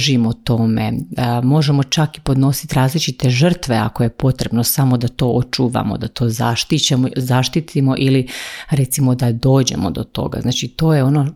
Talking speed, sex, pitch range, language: 150 wpm, female, 125-145 Hz, Croatian